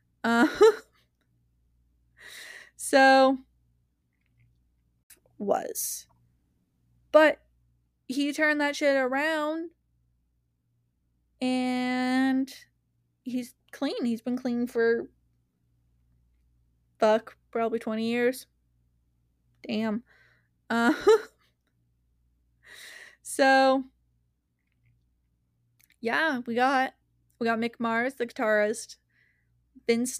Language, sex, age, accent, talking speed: English, female, 20-39, American, 65 wpm